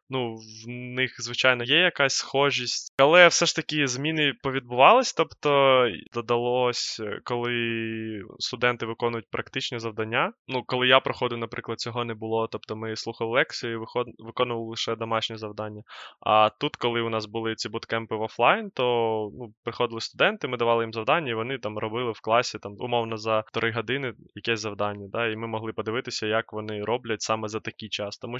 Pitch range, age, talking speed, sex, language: 110-130 Hz, 20-39, 170 wpm, male, Ukrainian